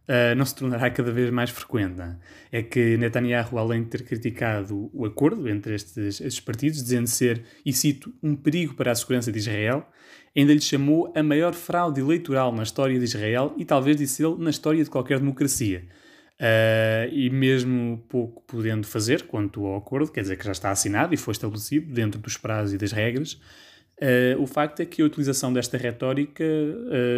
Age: 20-39